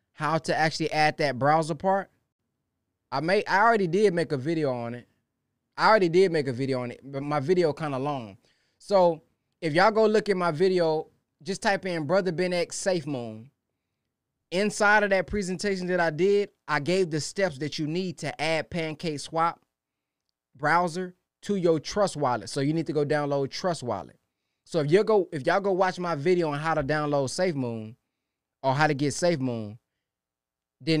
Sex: male